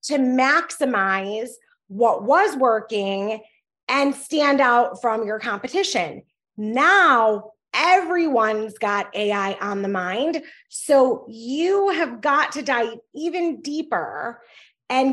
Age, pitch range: 30-49, 230-325 Hz